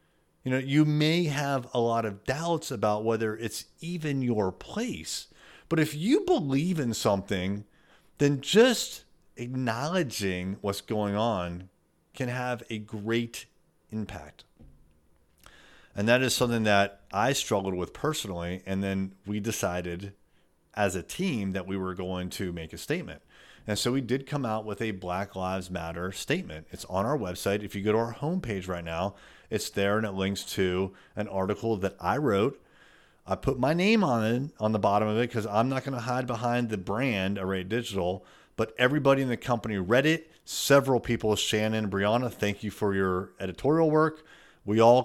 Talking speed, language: 175 wpm, English